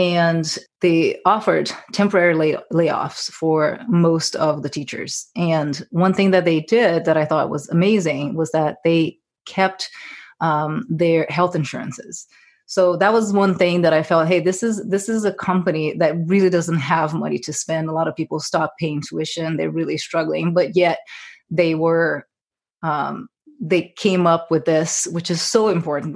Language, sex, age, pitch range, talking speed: English, female, 30-49, 160-185 Hz, 170 wpm